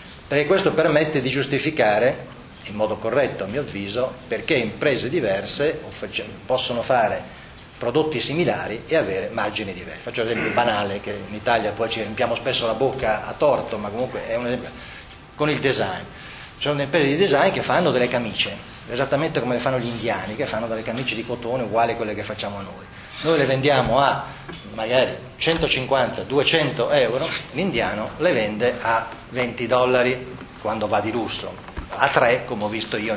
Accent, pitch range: native, 115-160 Hz